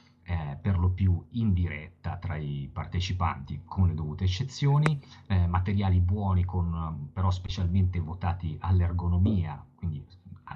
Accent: native